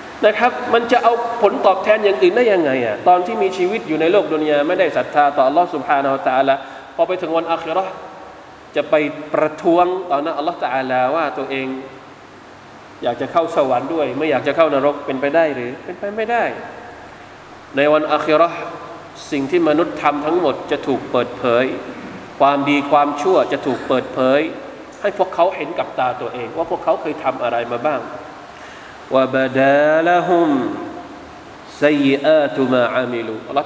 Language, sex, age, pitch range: Thai, male, 20-39, 140-200 Hz